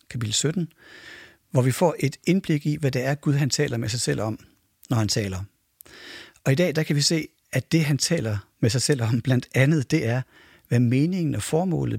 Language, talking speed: English, 220 wpm